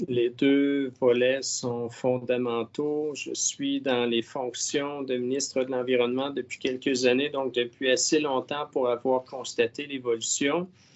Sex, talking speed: male, 135 wpm